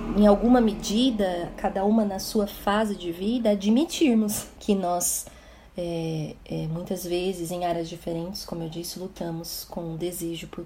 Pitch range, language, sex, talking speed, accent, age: 185-235 Hz, Portuguese, female, 145 wpm, Brazilian, 30-49